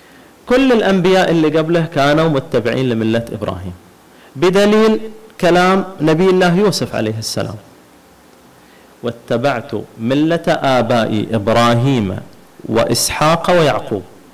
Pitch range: 120-175 Hz